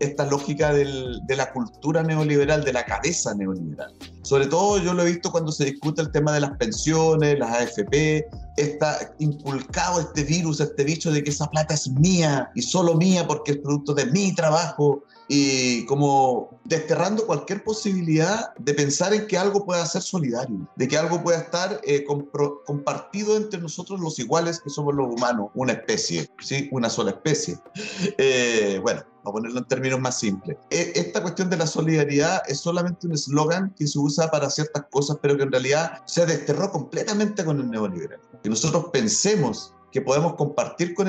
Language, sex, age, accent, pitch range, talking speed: Spanish, male, 40-59, Venezuelan, 140-180 Hz, 180 wpm